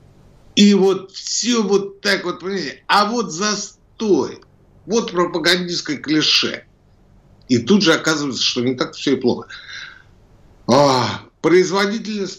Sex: male